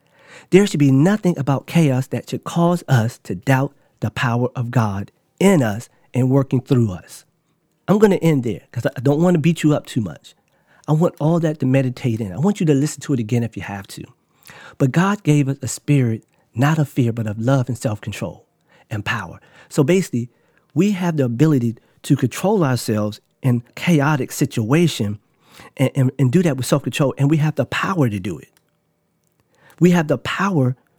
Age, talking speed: 40-59, 200 wpm